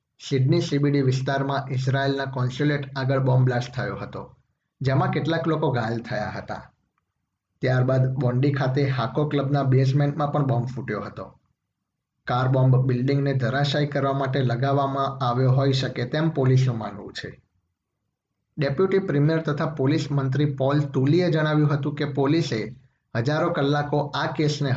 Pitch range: 125-145 Hz